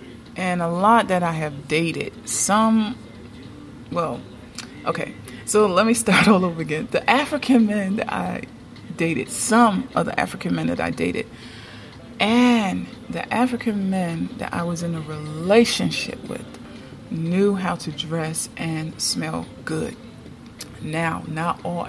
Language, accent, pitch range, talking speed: English, American, 160-215 Hz, 145 wpm